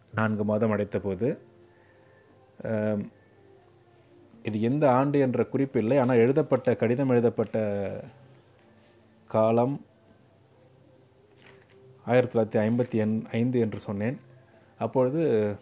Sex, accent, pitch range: male, native, 110-125 Hz